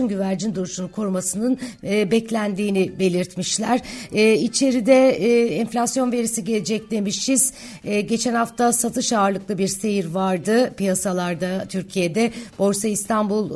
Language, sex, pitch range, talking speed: Turkish, female, 190-225 Hz, 110 wpm